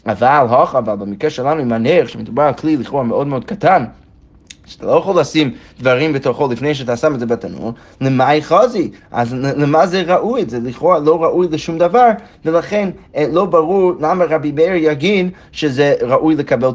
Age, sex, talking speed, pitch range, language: 30-49, male, 175 wpm, 125-165 Hz, Hebrew